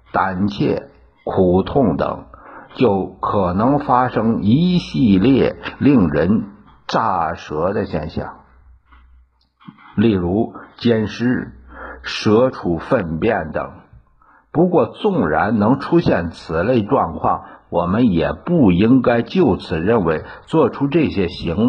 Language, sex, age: Chinese, male, 60-79